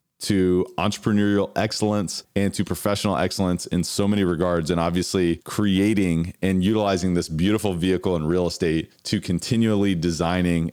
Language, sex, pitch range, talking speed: English, male, 90-110 Hz, 140 wpm